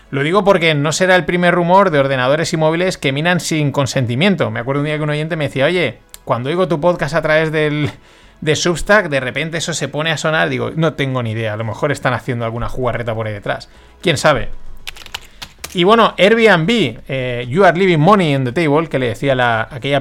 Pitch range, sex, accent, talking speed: 130-165 Hz, male, Spanish, 220 wpm